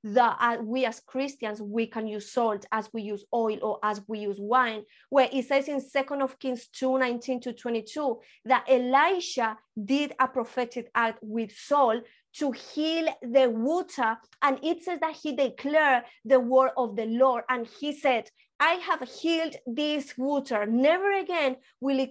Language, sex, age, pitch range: English, female, 20-39, 235-275 Hz